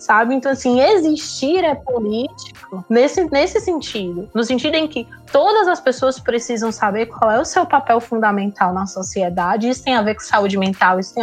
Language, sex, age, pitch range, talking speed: Portuguese, female, 20-39, 200-245 Hz, 185 wpm